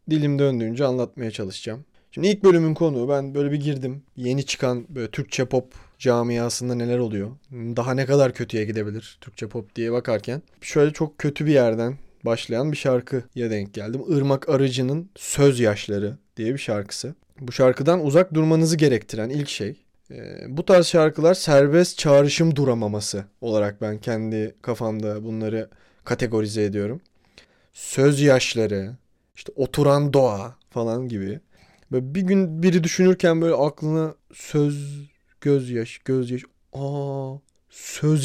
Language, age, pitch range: Turkish, 30-49, 115-145 Hz